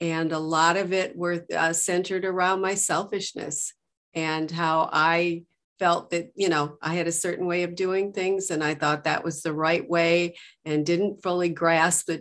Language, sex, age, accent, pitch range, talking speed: English, female, 50-69, American, 165-200 Hz, 190 wpm